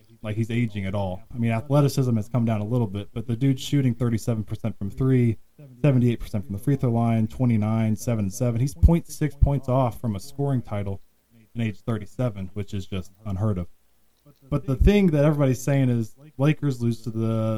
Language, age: English, 20-39